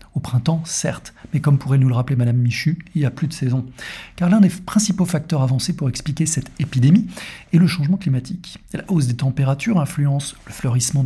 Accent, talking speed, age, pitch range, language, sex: French, 210 wpm, 40-59, 135-180 Hz, French, male